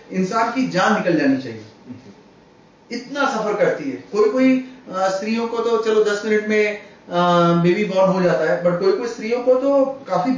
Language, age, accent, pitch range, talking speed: Hindi, 30-49, native, 185-255 Hz, 180 wpm